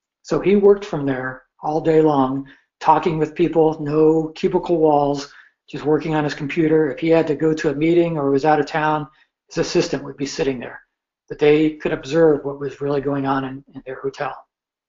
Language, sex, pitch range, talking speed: English, male, 140-165 Hz, 205 wpm